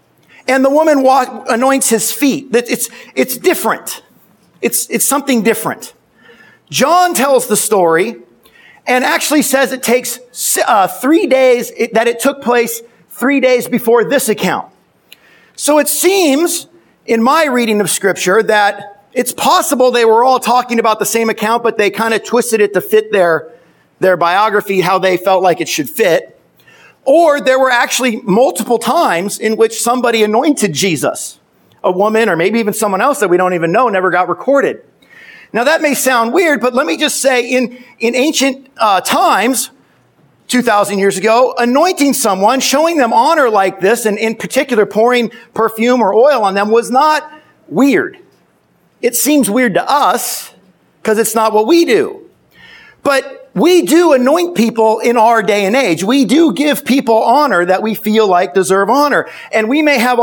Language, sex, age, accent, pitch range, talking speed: English, male, 50-69, American, 215-275 Hz, 170 wpm